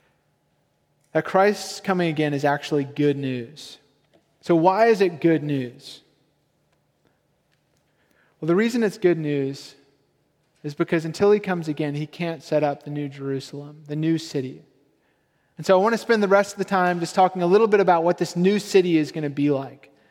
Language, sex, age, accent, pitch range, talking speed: English, male, 30-49, American, 150-195 Hz, 185 wpm